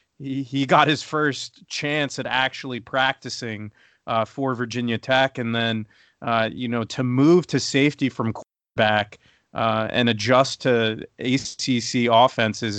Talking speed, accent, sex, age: 140 wpm, American, male, 30-49